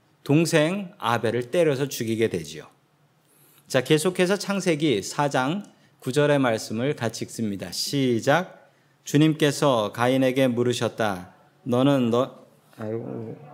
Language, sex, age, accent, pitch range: Korean, male, 40-59, native, 120-165 Hz